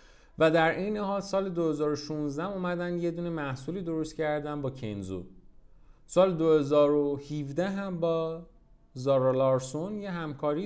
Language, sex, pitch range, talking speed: Persian, male, 120-175 Hz, 125 wpm